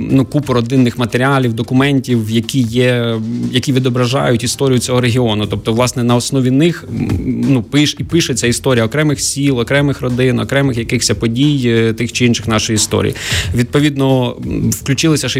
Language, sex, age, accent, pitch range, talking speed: Ukrainian, male, 20-39, native, 110-125 Hz, 145 wpm